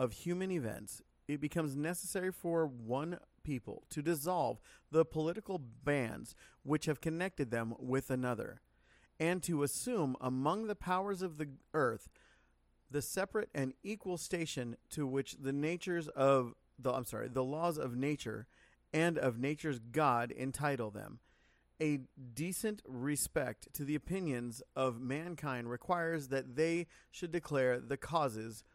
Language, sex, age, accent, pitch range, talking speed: English, male, 40-59, American, 125-165 Hz, 140 wpm